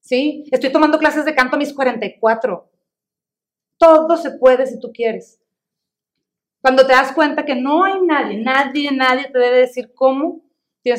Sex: female